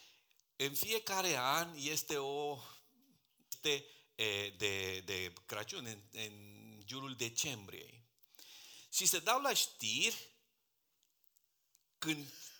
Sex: male